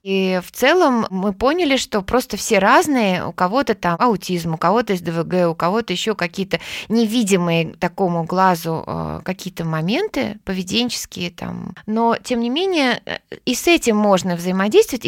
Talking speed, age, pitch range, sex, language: 145 wpm, 20-39, 180-225 Hz, female, Russian